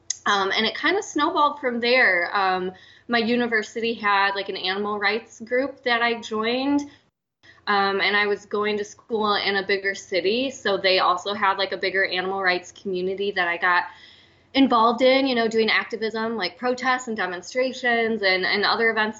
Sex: female